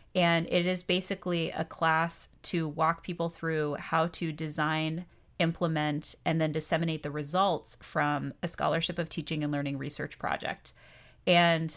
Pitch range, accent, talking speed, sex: 160-185 Hz, American, 150 wpm, female